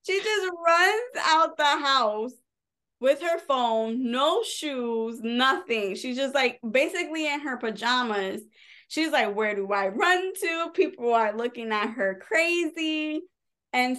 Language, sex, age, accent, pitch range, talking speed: English, female, 20-39, American, 210-270 Hz, 140 wpm